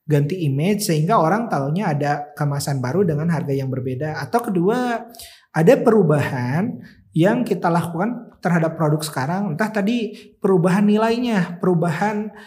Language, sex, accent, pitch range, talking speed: Indonesian, male, native, 150-200 Hz, 130 wpm